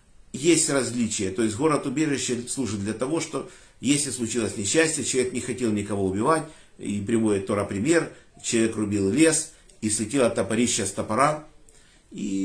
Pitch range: 110-150 Hz